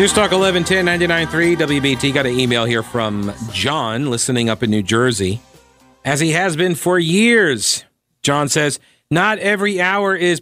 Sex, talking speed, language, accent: male, 160 wpm, English, American